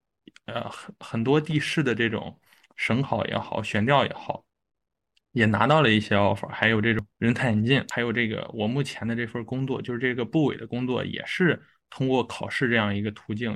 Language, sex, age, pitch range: Chinese, male, 20-39, 110-135 Hz